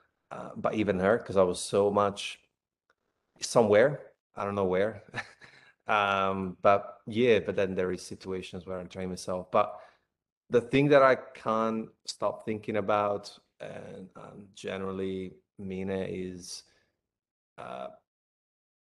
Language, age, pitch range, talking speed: English, 30-49, 95-105 Hz, 125 wpm